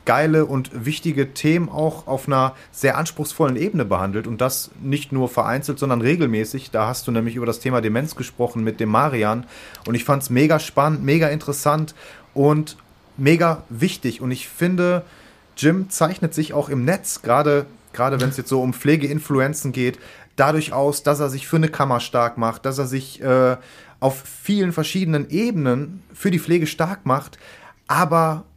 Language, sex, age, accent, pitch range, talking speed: German, male, 30-49, German, 125-155 Hz, 170 wpm